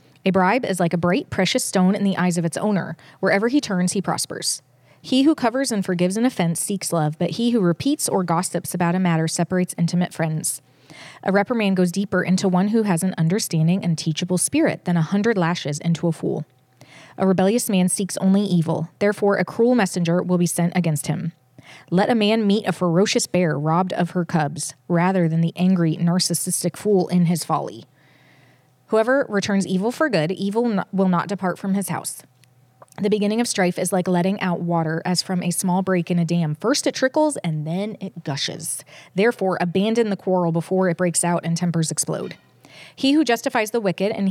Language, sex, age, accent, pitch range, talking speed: English, female, 20-39, American, 165-200 Hz, 200 wpm